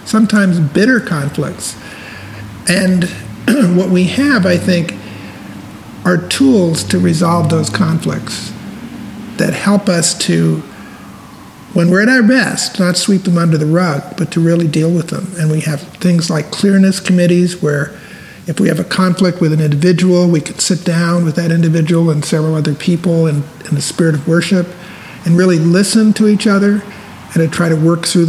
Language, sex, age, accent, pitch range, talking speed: English, male, 50-69, American, 155-185 Hz, 170 wpm